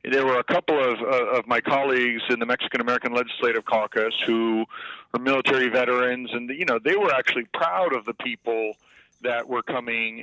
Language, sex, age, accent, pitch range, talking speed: English, male, 40-59, American, 115-130 Hz, 180 wpm